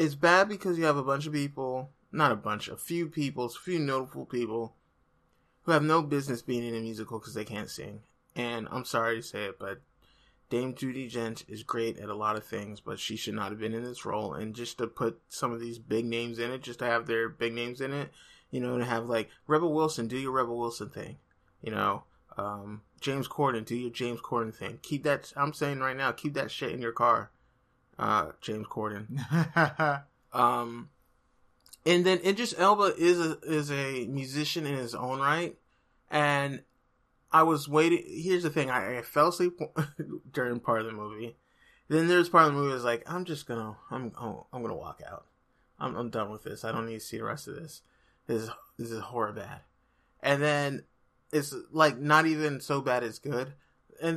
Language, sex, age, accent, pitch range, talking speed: English, male, 20-39, American, 115-155 Hz, 215 wpm